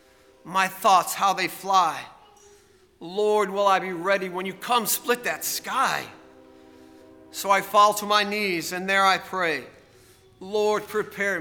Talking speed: 145 wpm